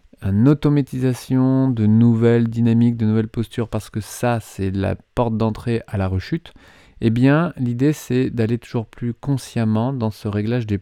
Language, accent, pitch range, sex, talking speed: French, French, 100-130 Hz, male, 170 wpm